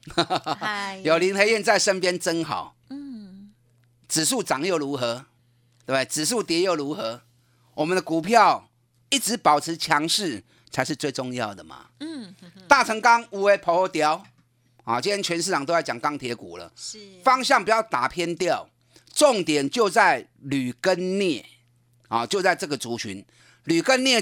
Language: Chinese